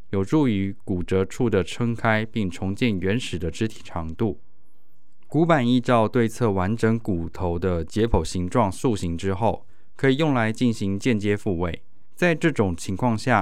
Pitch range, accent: 95-125 Hz, native